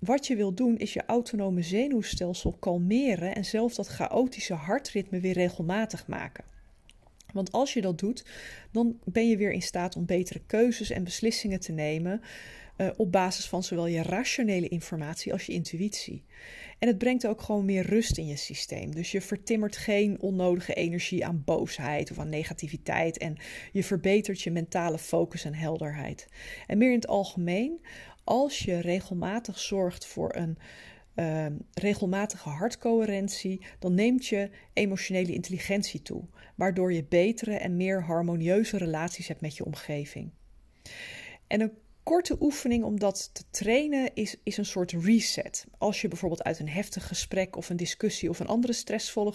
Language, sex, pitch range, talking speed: Dutch, female, 175-225 Hz, 160 wpm